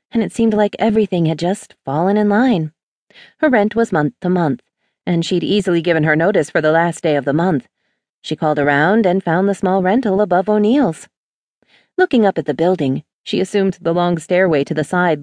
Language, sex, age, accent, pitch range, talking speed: English, female, 40-59, American, 150-205 Hz, 205 wpm